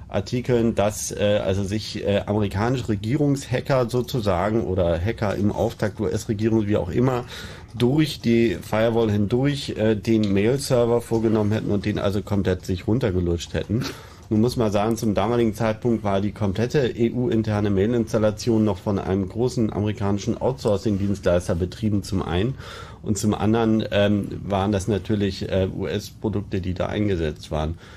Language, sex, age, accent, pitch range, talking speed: German, male, 40-59, German, 95-115 Hz, 145 wpm